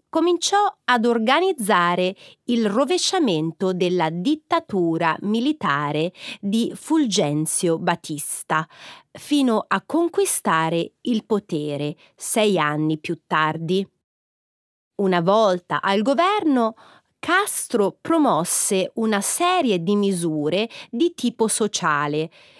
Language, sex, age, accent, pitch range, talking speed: Italian, female, 30-49, native, 170-255 Hz, 90 wpm